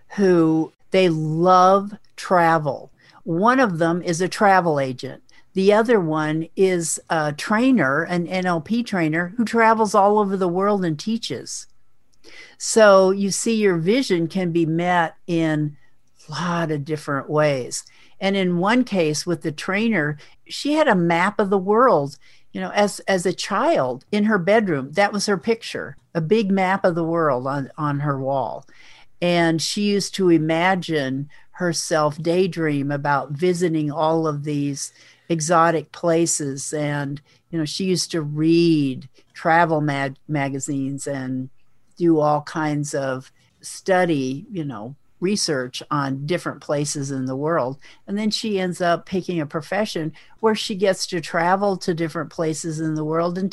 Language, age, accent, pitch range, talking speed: English, 50-69, American, 150-190 Hz, 155 wpm